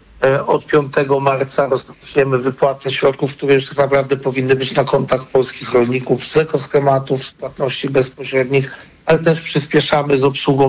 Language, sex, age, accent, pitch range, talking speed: Polish, male, 50-69, native, 135-155 Hz, 145 wpm